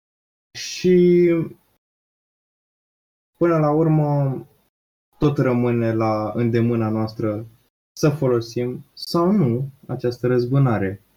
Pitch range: 105-135 Hz